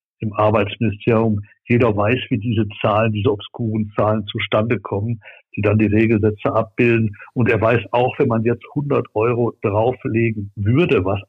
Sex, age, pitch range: male, 60-79, 110-140 Hz